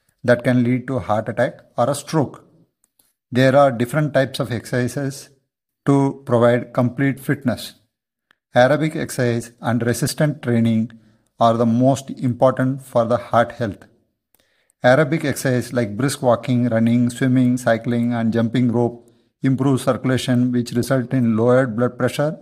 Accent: Indian